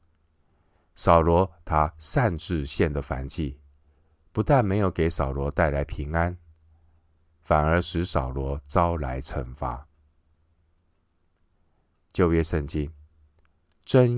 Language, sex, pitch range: Chinese, male, 75-85 Hz